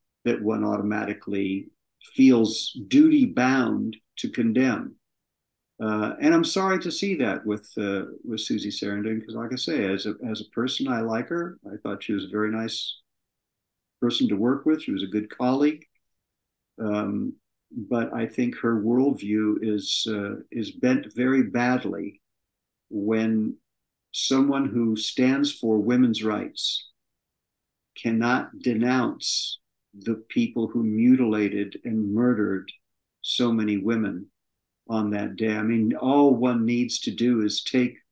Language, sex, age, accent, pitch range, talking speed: English, male, 50-69, American, 105-125 Hz, 140 wpm